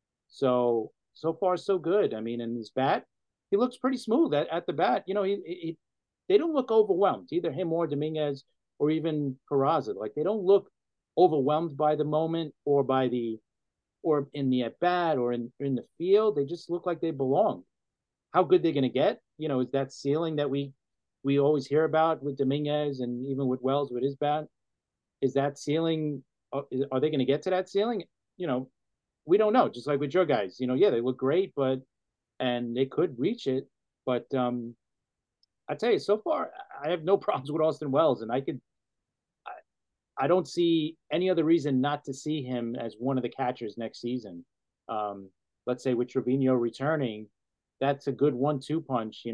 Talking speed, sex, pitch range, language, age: 205 wpm, male, 125-160 Hz, English, 40-59